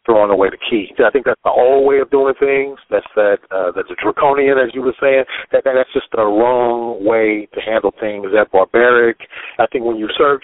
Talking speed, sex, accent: 225 wpm, male, American